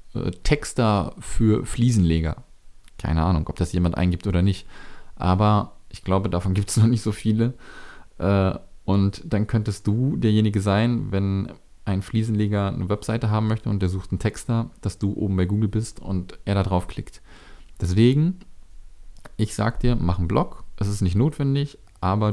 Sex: male